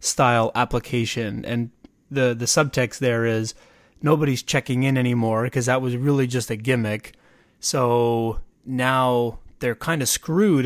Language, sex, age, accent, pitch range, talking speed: English, male, 30-49, American, 115-135 Hz, 140 wpm